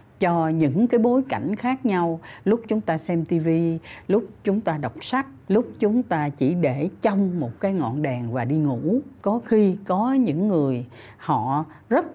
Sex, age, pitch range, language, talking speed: female, 60-79, 140-210 Hz, Vietnamese, 185 wpm